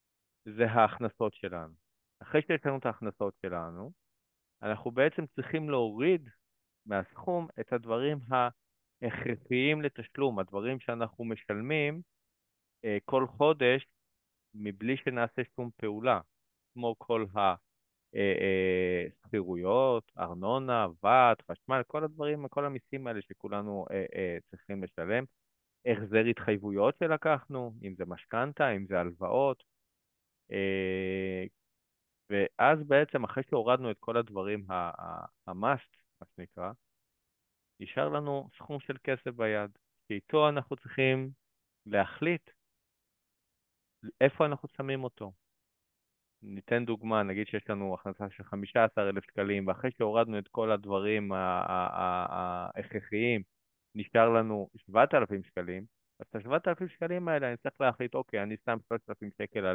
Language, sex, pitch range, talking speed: Hebrew, male, 100-130 Hz, 110 wpm